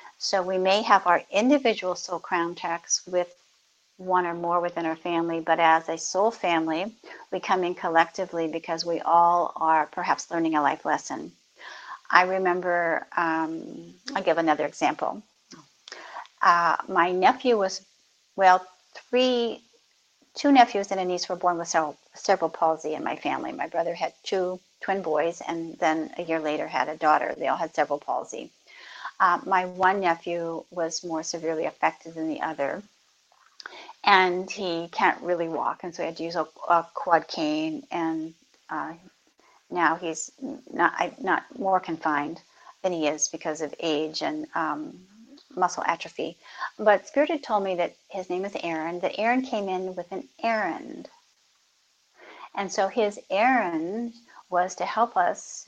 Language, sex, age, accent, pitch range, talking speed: English, female, 50-69, American, 165-195 Hz, 160 wpm